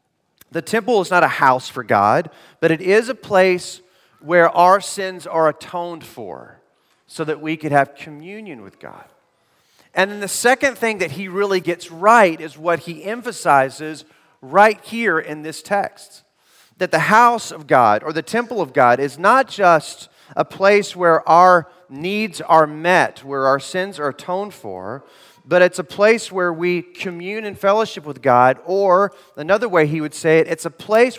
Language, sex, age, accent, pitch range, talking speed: English, male, 40-59, American, 150-195 Hz, 180 wpm